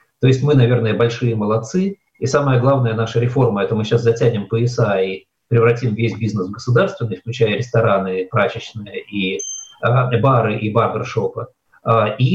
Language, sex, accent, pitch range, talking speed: Russian, male, native, 115-130 Hz, 150 wpm